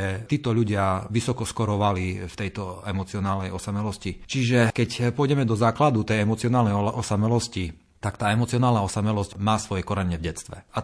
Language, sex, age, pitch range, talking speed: Slovak, male, 40-59, 100-115 Hz, 145 wpm